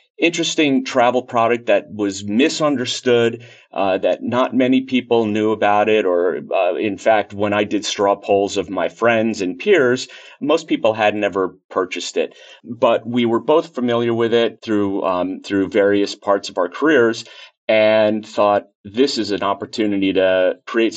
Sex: male